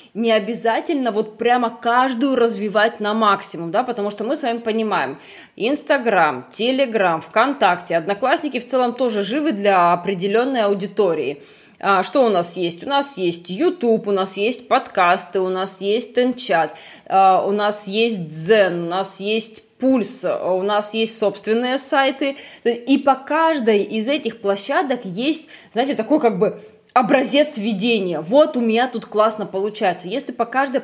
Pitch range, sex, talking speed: 200-250 Hz, female, 150 wpm